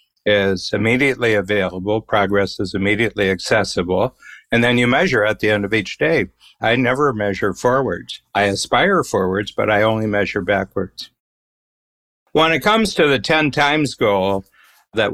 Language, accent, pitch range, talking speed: English, American, 100-115 Hz, 150 wpm